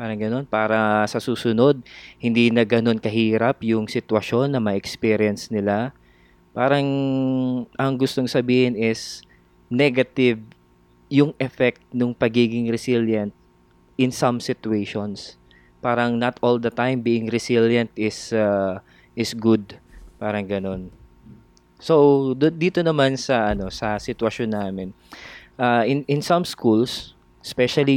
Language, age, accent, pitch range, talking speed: Filipino, 20-39, native, 100-125 Hz, 115 wpm